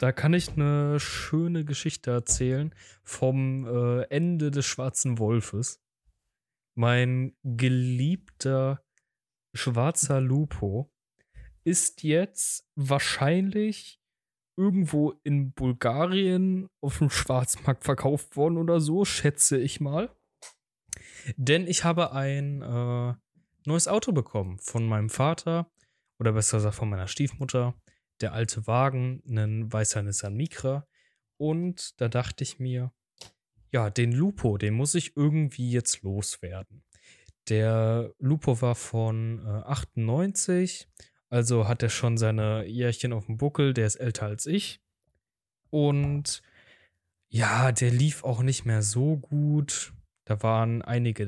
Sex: male